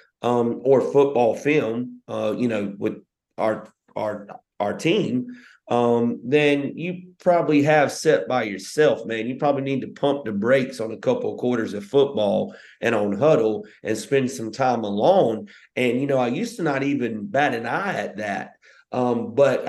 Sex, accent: male, American